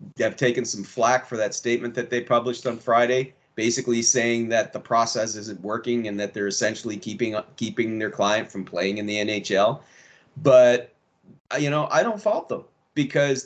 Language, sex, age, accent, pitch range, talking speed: English, male, 40-59, American, 120-170 Hz, 185 wpm